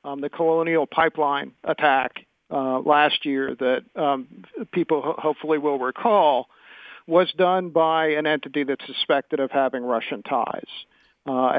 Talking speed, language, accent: 135 wpm, English, American